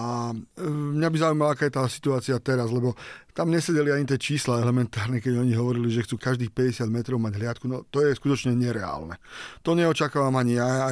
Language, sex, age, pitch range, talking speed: Slovak, male, 40-59, 125-145 Hz, 200 wpm